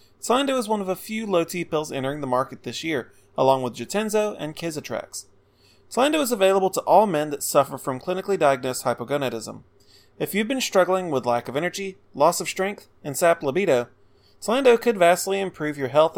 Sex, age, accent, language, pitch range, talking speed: male, 30-49, American, English, 125-185 Hz, 185 wpm